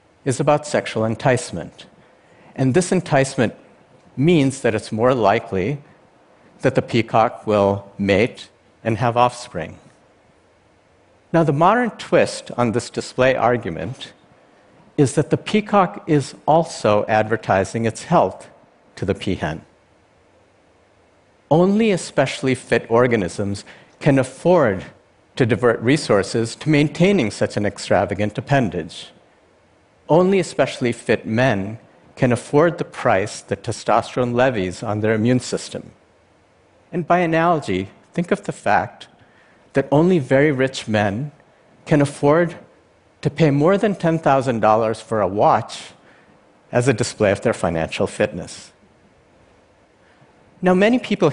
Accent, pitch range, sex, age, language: American, 110-160 Hz, male, 60-79, Chinese